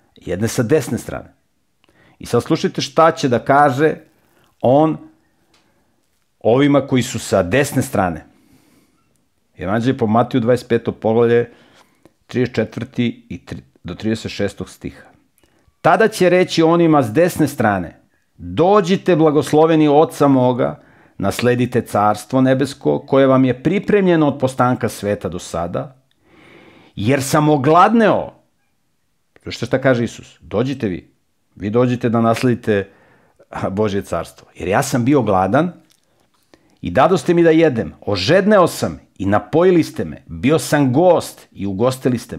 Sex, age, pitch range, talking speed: male, 50-69, 105-155 Hz, 125 wpm